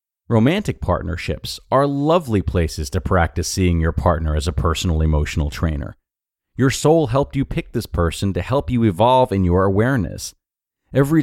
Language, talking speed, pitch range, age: English, 160 wpm, 90-130 Hz, 30-49